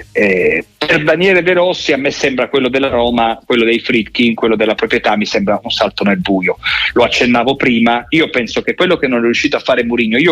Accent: native